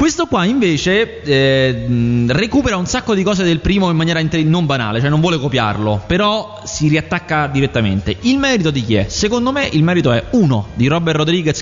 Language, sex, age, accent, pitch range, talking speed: Italian, male, 20-39, native, 110-150 Hz, 190 wpm